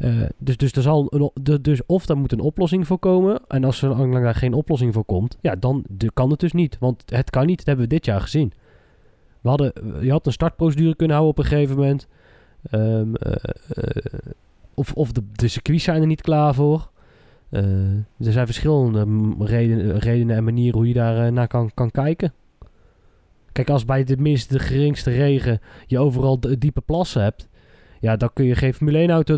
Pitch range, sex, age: 115-145 Hz, male, 20-39